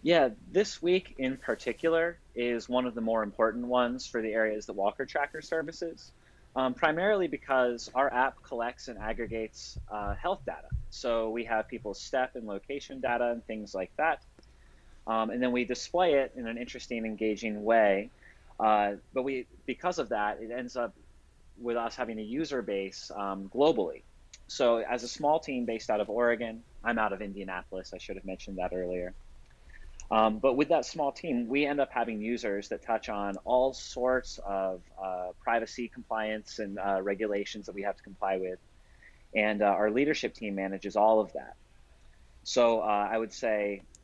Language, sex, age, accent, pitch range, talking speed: English, male, 30-49, American, 100-125 Hz, 180 wpm